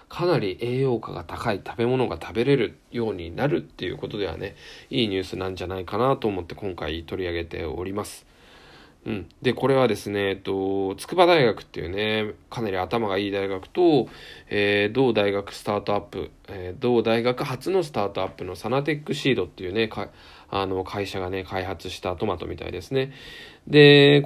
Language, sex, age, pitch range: Japanese, male, 20-39, 90-120 Hz